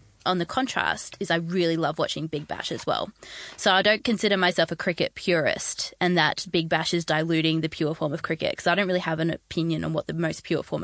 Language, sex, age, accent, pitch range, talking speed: English, female, 20-39, Australian, 170-205 Hz, 245 wpm